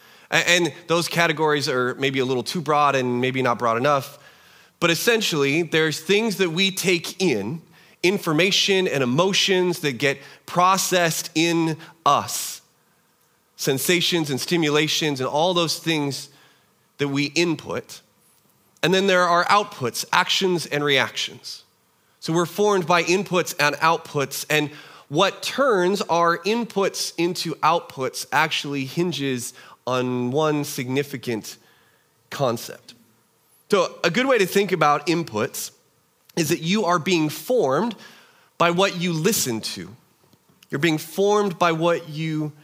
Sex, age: male, 30-49